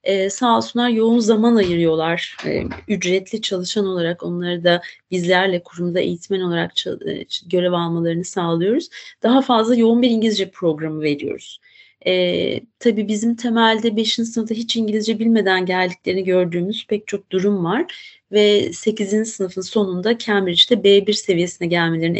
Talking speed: 130 wpm